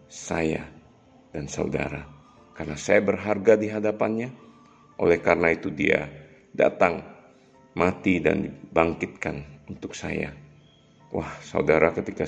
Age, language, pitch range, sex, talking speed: 50-69, Indonesian, 75-95 Hz, male, 100 wpm